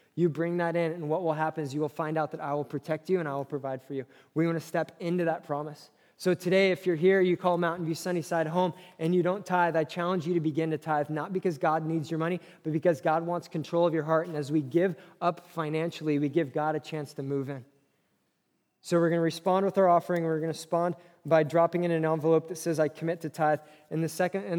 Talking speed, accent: 260 wpm, American